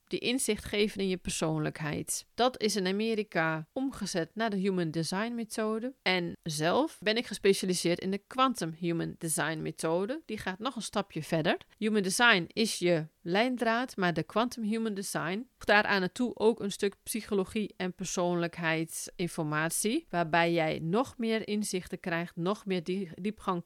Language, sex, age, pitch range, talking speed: Dutch, female, 40-59, 175-225 Hz, 150 wpm